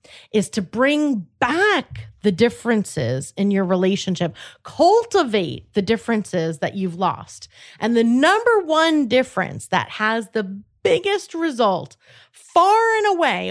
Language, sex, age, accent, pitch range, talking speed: English, female, 30-49, American, 200-275 Hz, 125 wpm